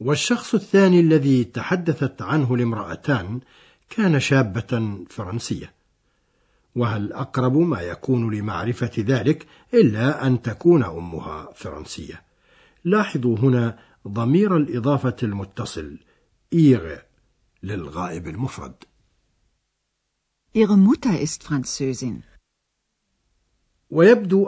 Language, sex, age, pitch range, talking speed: Arabic, male, 60-79, 115-150 Hz, 70 wpm